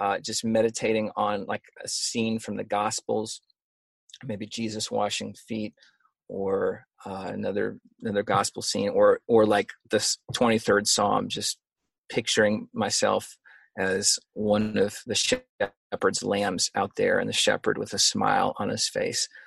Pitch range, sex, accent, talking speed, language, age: 105-135 Hz, male, American, 140 wpm, English, 30-49